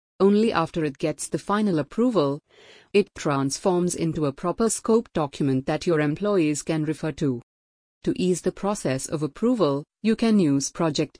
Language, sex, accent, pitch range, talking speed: English, female, Indian, 155-195 Hz, 160 wpm